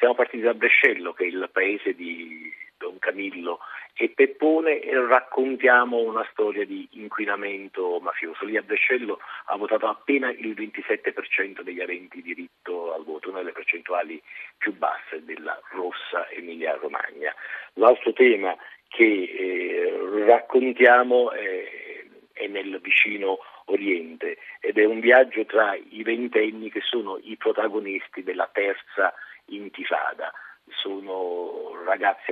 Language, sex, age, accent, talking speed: Italian, male, 50-69, native, 125 wpm